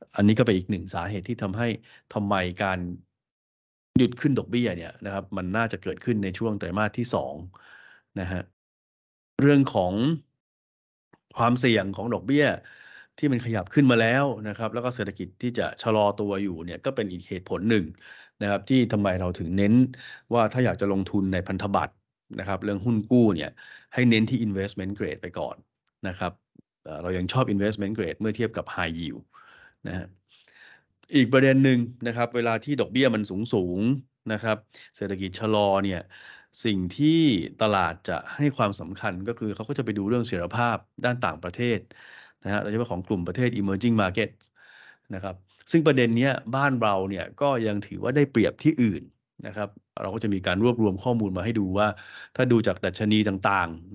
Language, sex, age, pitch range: Thai, male, 30-49, 95-120 Hz